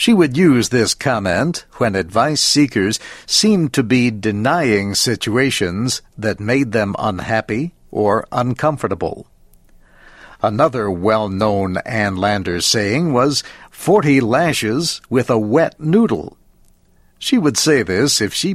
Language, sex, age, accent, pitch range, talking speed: English, male, 60-79, American, 105-145 Hz, 120 wpm